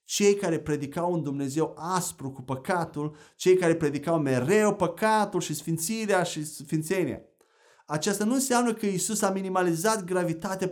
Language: Romanian